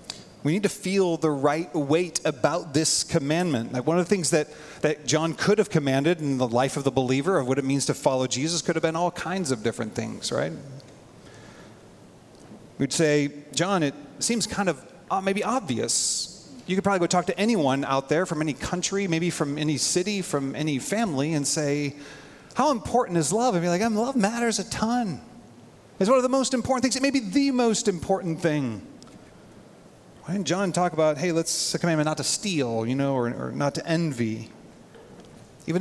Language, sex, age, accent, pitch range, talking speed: English, male, 30-49, American, 140-185 Hz, 200 wpm